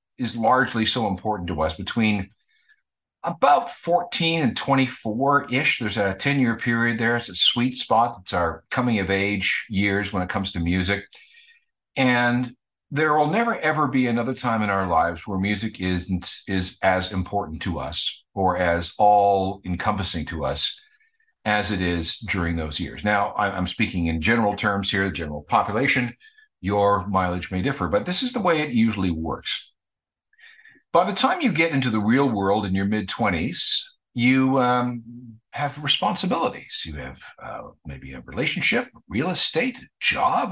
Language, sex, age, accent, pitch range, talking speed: English, male, 50-69, American, 95-140 Hz, 160 wpm